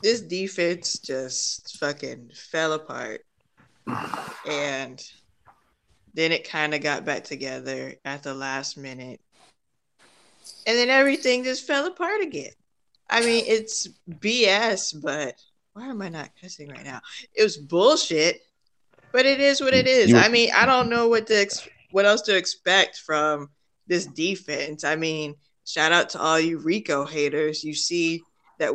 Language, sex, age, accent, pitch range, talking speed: English, female, 20-39, American, 160-255 Hz, 150 wpm